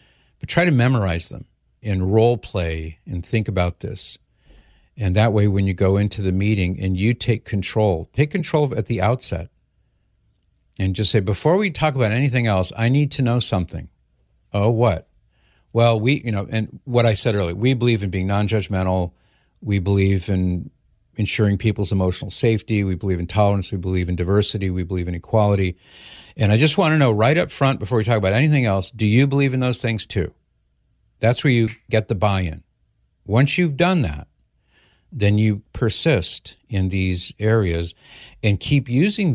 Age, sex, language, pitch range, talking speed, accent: 50-69, male, English, 95-125 Hz, 185 wpm, American